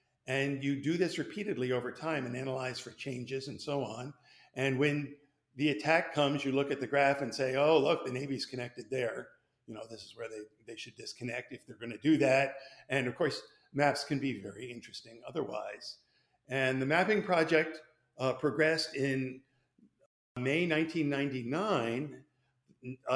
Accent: American